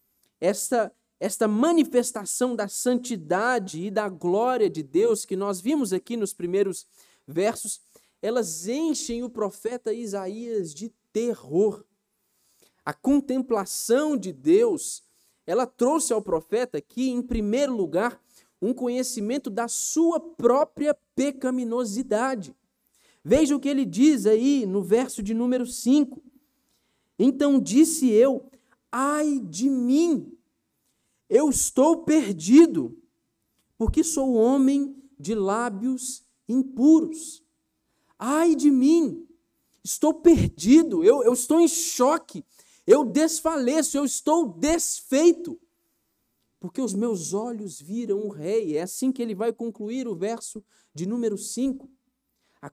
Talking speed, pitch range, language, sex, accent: 115 wpm, 210-280 Hz, Portuguese, male, Brazilian